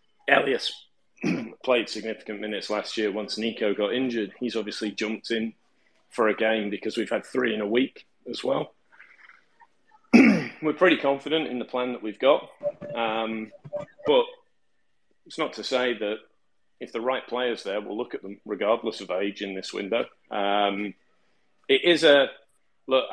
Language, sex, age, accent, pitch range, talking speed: English, male, 30-49, British, 105-125 Hz, 160 wpm